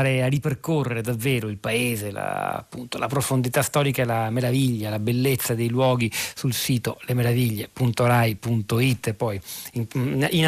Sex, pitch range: male, 115-145 Hz